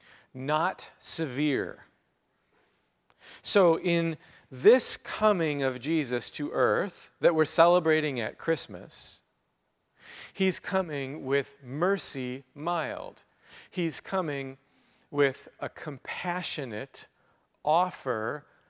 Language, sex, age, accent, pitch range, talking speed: English, male, 40-59, American, 130-175 Hz, 85 wpm